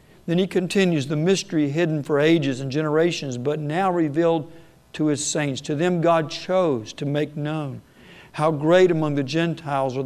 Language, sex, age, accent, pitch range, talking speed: English, male, 60-79, American, 140-165 Hz, 175 wpm